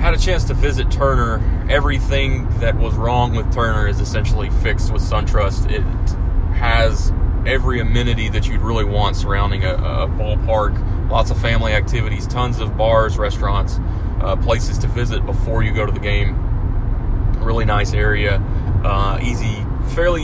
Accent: American